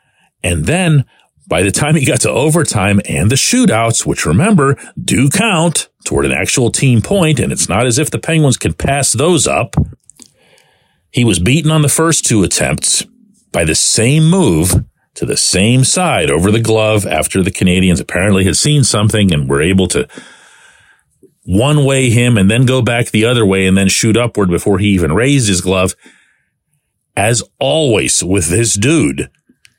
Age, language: 40-59, English